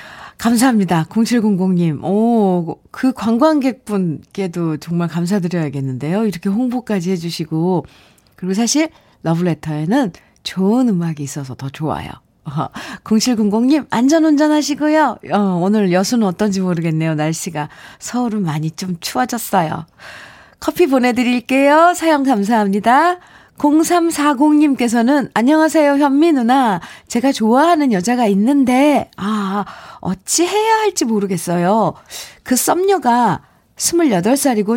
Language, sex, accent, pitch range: Korean, female, native, 175-265 Hz